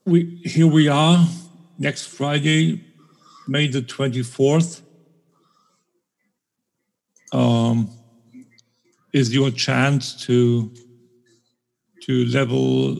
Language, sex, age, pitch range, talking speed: English, male, 50-69, 125-150 Hz, 80 wpm